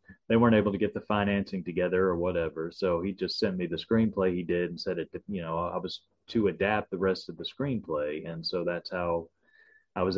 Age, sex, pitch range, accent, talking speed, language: 30-49, male, 90-105 Hz, American, 230 wpm, English